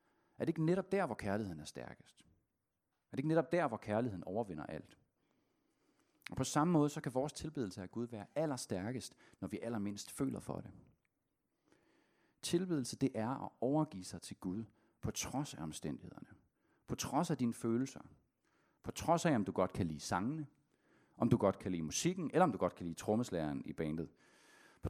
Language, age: Danish, 40-59